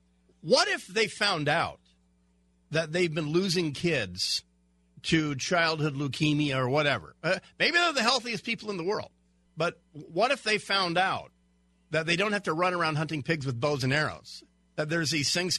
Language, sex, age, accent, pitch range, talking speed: English, male, 50-69, American, 125-175 Hz, 180 wpm